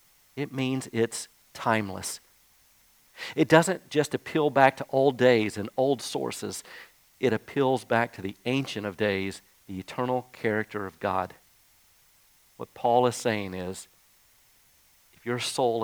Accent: American